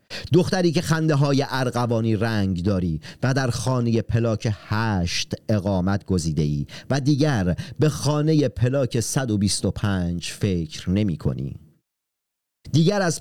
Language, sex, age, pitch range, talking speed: Persian, male, 40-59, 95-145 Hz, 120 wpm